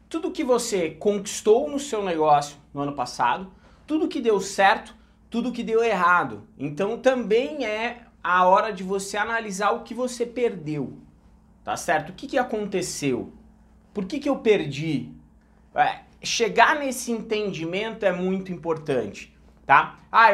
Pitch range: 165-225 Hz